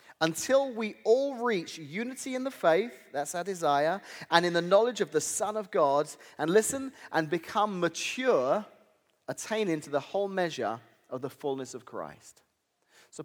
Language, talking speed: English, 165 wpm